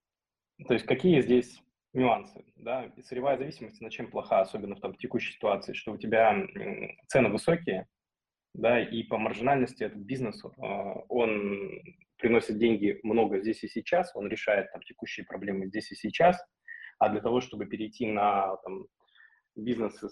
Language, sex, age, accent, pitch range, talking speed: Russian, male, 20-39, native, 100-115 Hz, 150 wpm